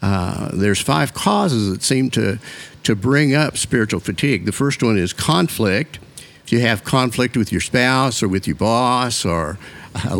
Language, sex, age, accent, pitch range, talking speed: English, male, 60-79, American, 100-130 Hz, 175 wpm